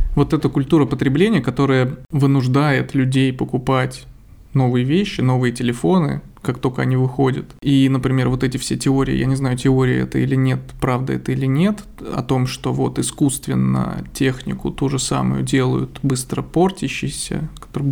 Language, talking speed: Russian, 155 wpm